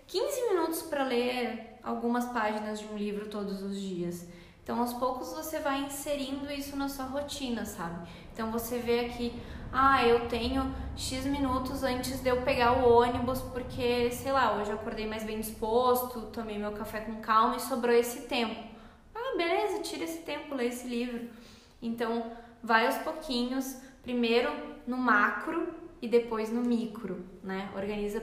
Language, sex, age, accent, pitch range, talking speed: Portuguese, female, 20-39, Brazilian, 210-255 Hz, 165 wpm